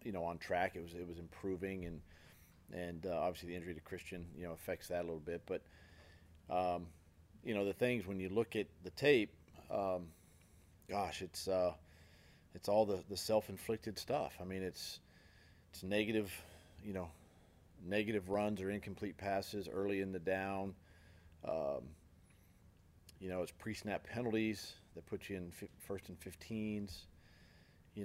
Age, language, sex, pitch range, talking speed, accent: 40-59, English, male, 85-100 Hz, 165 wpm, American